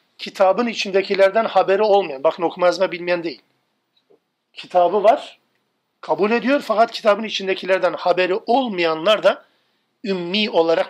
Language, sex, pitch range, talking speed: Turkish, male, 175-215 Hz, 110 wpm